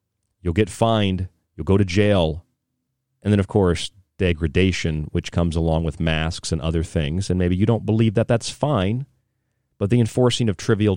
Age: 40-59